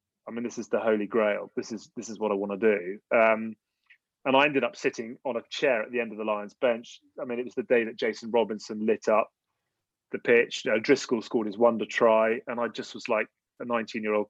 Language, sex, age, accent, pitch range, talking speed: English, male, 30-49, British, 105-120 Hz, 250 wpm